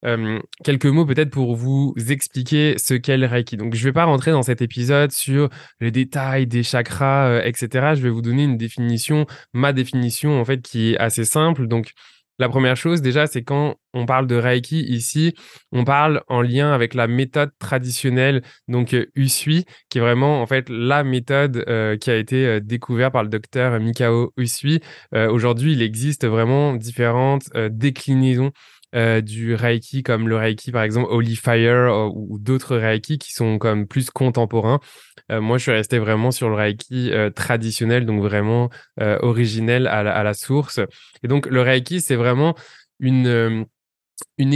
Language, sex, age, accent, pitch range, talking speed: French, male, 20-39, French, 115-140 Hz, 180 wpm